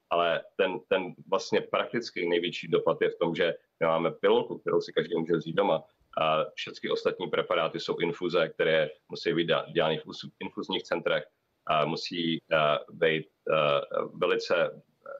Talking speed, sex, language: 150 wpm, male, Czech